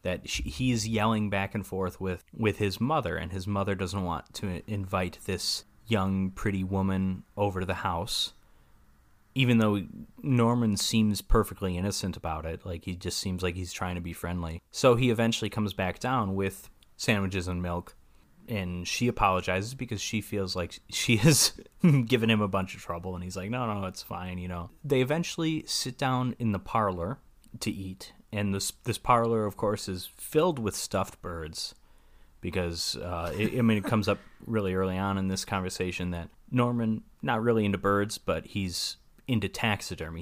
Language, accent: English, American